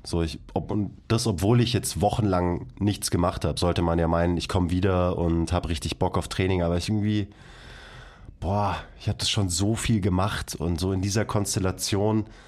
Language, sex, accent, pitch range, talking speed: German, male, German, 85-100 Hz, 195 wpm